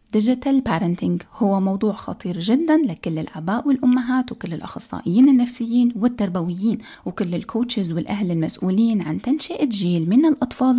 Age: 20-39